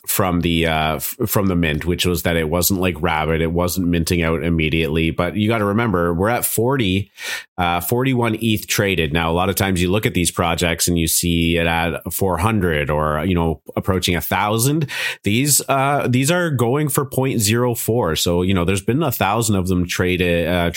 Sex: male